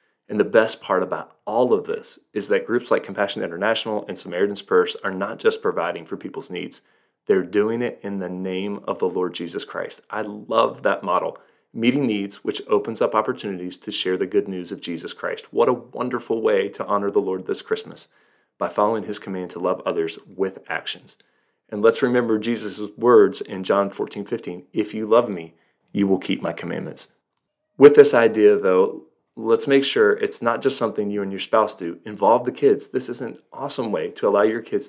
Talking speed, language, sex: 205 wpm, English, male